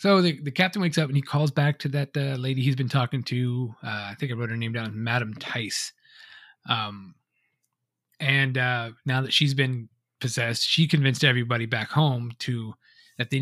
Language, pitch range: English, 120-150 Hz